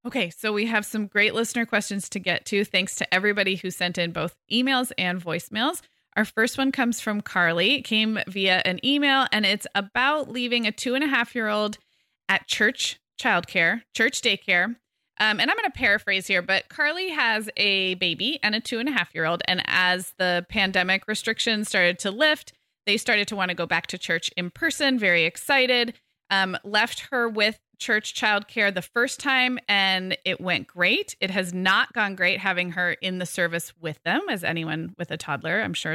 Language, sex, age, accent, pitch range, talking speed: English, female, 20-39, American, 185-250 Hz, 200 wpm